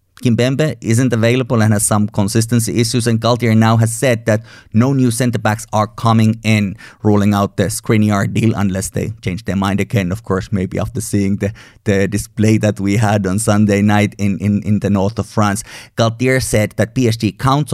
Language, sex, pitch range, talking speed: English, male, 100-115 Hz, 195 wpm